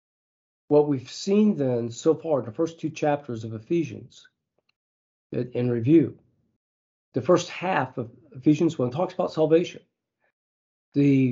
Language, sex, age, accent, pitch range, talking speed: English, male, 40-59, American, 120-160 Hz, 135 wpm